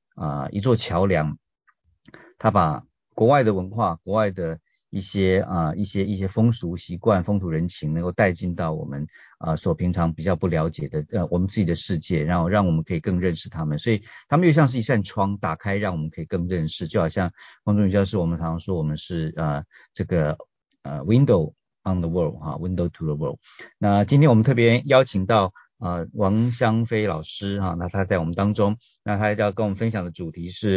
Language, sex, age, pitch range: Chinese, male, 50-69, 85-110 Hz